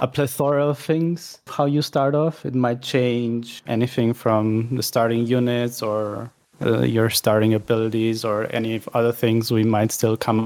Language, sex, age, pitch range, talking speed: English, male, 20-39, 115-135 Hz, 165 wpm